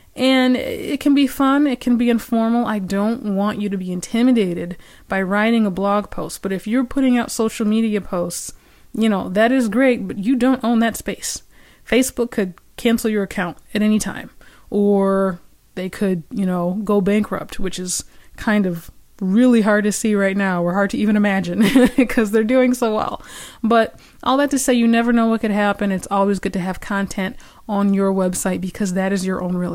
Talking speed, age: 205 wpm, 20-39